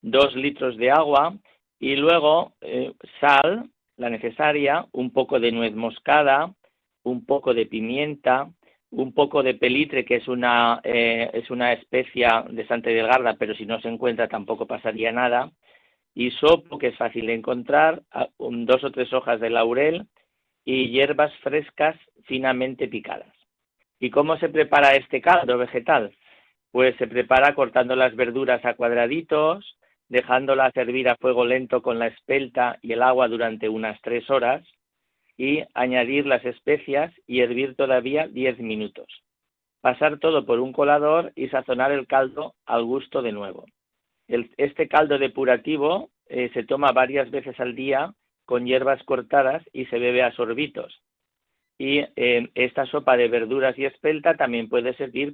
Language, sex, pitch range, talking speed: Spanish, male, 120-140 Hz, 155 wpm